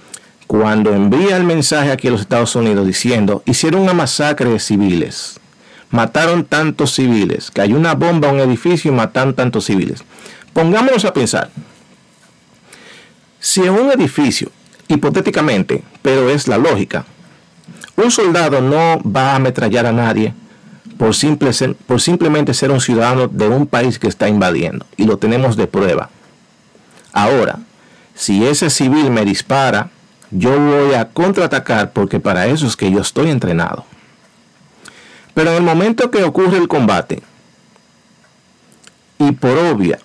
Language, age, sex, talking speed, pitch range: Spanish, 50-69, male, 145 wpm, 125-175 Hz